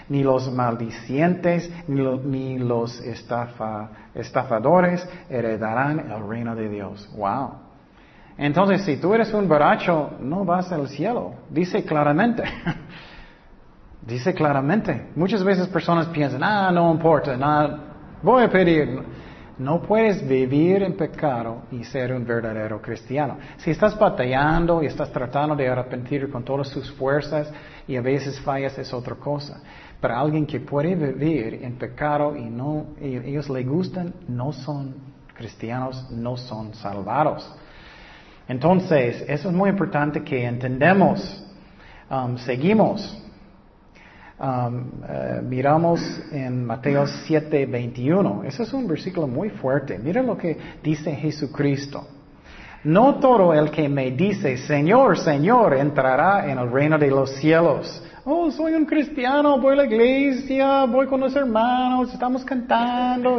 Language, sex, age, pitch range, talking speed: Spanish, male, 40-59, 130-180 Hz, 135 wpm